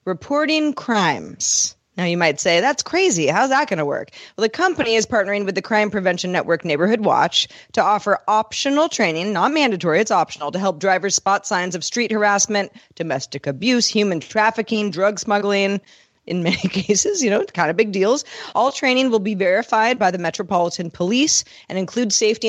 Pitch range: 165-215 Hz